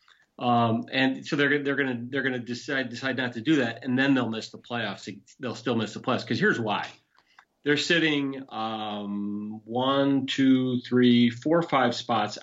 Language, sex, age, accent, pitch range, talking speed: English, male, 40-59, American, 110-130 Hz, 190 wpm